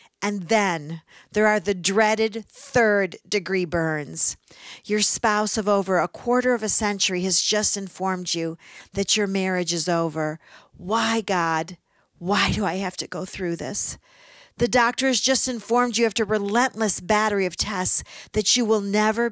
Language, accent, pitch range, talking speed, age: English, American, 190-235 Hz, 165 wpm, 50-69